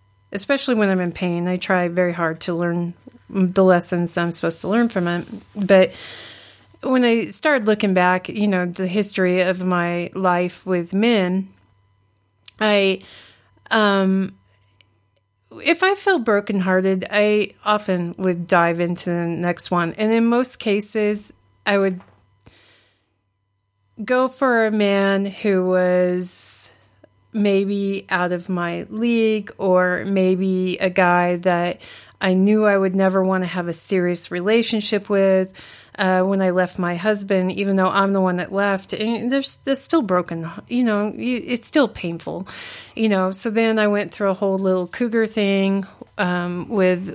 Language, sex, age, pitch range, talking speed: English, female, 40-59, 175-210 Hz, 150 wpm